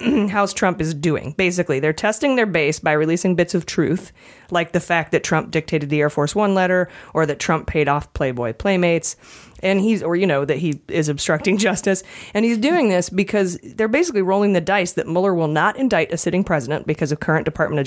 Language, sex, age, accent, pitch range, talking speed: English, female, 30-49, American, 155-190 Hz, 220 wpm